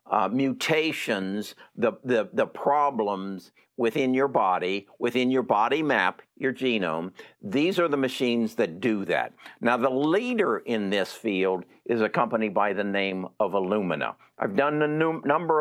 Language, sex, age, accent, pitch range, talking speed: English, male, 60-79, American, 100-130 Hz, 160 wpm